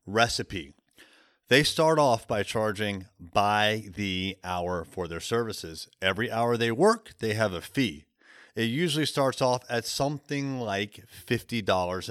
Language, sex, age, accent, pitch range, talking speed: English, male, 30-49, American, 95-125 Hz, 140 wpm